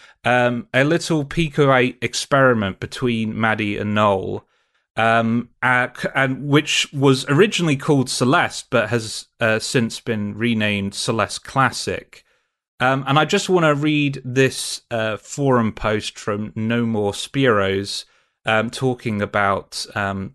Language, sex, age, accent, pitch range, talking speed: English, male, 30-49, British, 110-135 Hz, 135 wpm